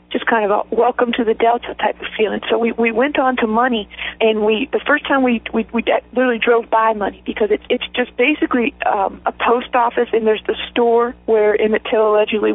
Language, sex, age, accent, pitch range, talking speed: English, female, 50-69, American, 220-255 Hz, 220 wpm